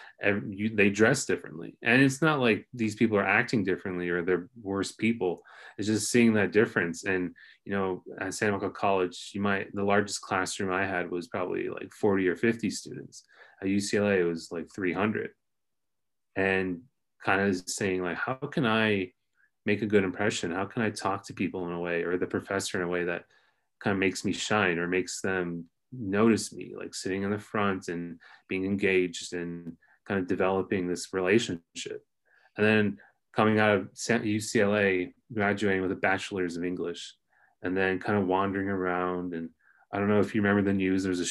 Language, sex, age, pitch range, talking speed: English, male, 30-49, 90-105 Hz, 190 wpm